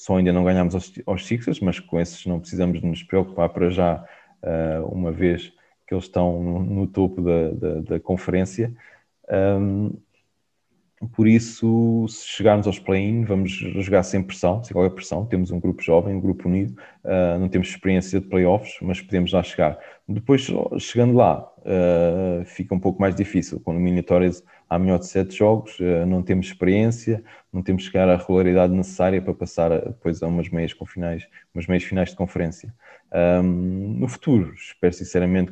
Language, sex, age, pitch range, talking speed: Portuguese, male, 20-39, 85-95 Hz, 175 wpm